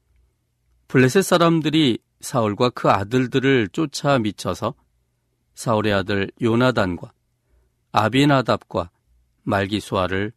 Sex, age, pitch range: male, 40-59, 95-130 Hz